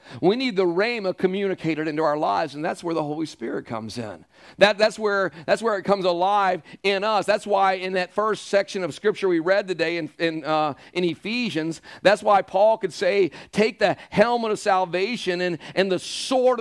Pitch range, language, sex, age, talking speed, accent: 175-220 Hz, English, male, 40-59, 200 wpm, American